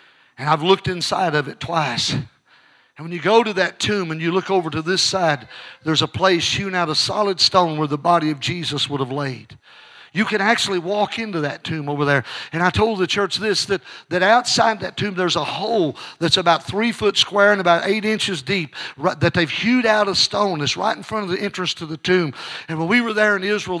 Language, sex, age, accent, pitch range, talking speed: English, male, 50-69, American, 165-210 Hz, 235 wpm